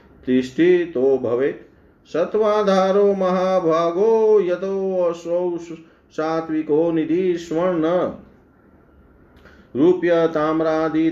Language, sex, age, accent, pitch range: Hindi, male, 40-59, native, 125-170 Hz